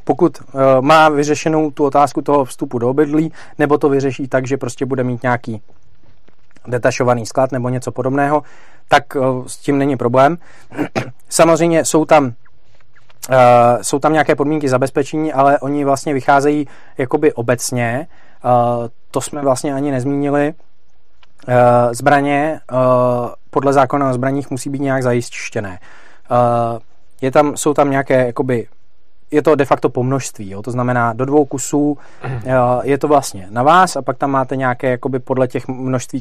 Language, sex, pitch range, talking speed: Czech, male, 120-145 Hz, 155 wpm